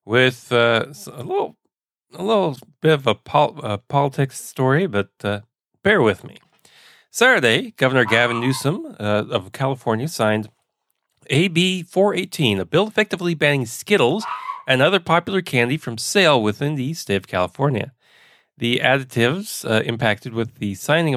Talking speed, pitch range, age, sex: 145 wpm, 115-180 Hz, 40-59, male